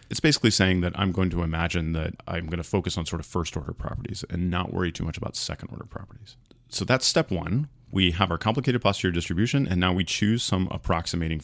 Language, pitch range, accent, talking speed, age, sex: English, 90-115 Hz, American, 220 wpm, 40-59, male